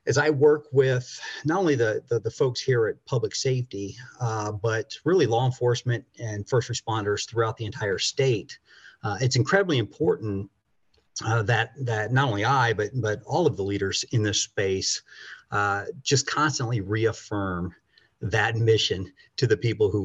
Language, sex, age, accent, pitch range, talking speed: English, male, 40-59, American, 105-140 Hz, 165 wpm